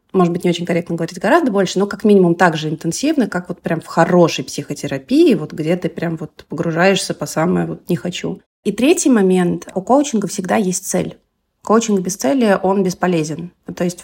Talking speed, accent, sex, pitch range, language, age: 195 wpm, native, female, 165-200 Hz, Russian, 30-49